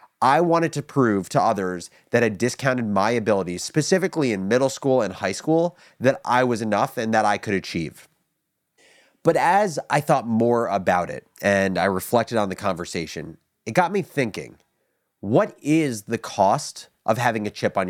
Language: English